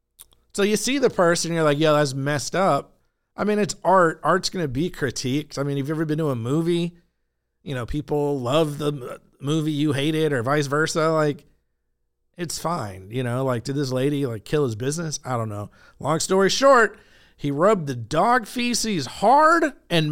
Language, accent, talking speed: English, American, 205 wpm